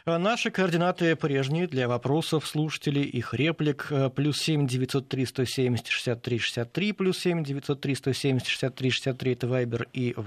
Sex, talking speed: male, 125 wpm